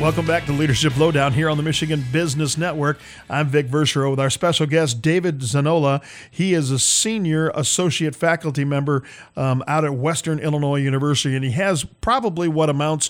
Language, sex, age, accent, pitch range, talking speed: English, male, 40-59, American, 135-160 Hz, 180 wpm